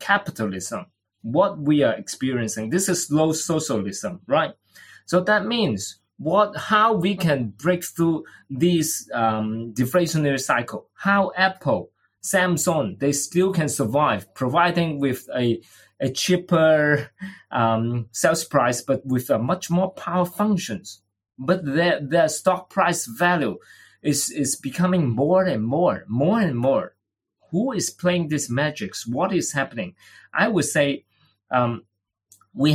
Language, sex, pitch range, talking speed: English, male, 125-175 Hz, 135 wpm